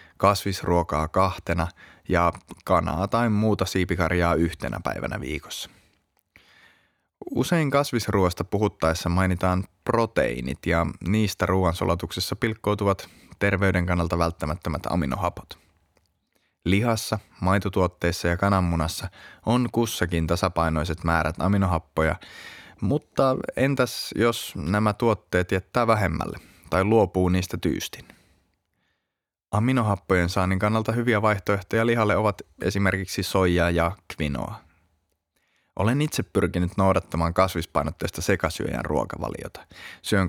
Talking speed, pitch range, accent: 90 wpm, 85-100 Hz, native